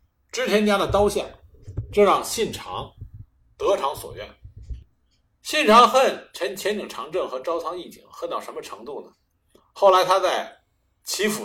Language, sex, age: Chinese, male, 50-69